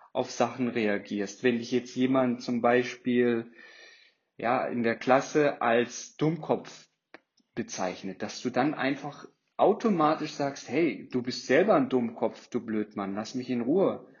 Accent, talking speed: German, 145 wpm